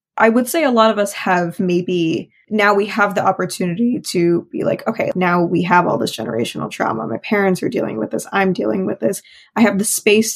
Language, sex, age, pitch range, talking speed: English, female, 20-39, 180-210 Hz, 225 wpm